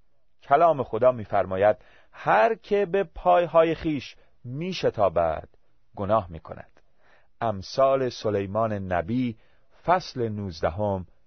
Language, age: Persian, 40-59